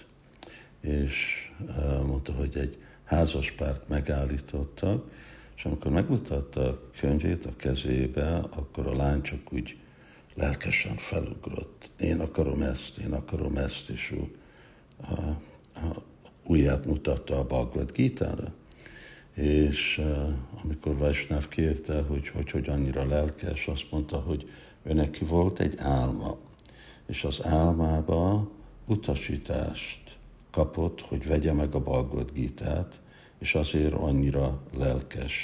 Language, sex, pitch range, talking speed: Hungarian, male, 70-80 Hz, 115 wpm